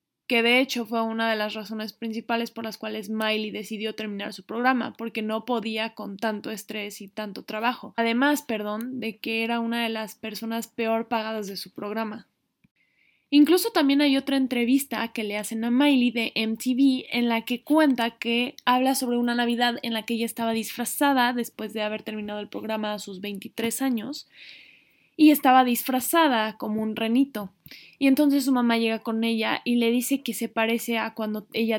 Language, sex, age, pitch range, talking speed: Spanish, female, 20-39, 220-255 Hz, 185 wpm